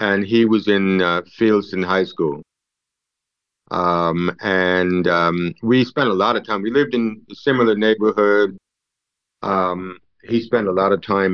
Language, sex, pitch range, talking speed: English, male, 90-105 Hz, 165 wpm